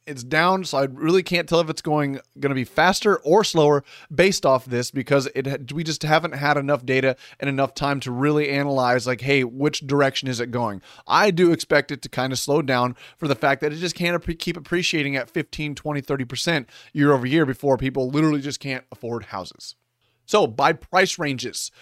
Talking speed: 210 wpm